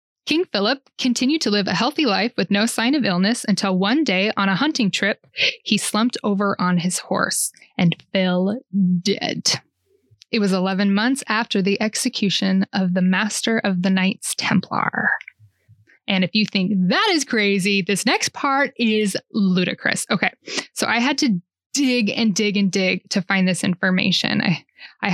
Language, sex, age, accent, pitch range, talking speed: English, female, 10-29, American, 195-245 Hz, 170 wpm